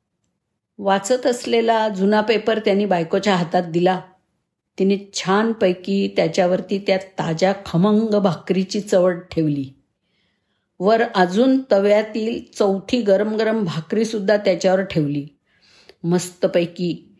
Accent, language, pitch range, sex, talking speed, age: native, Marathi, 180-220 Hz, female, 100 wpm, 50-69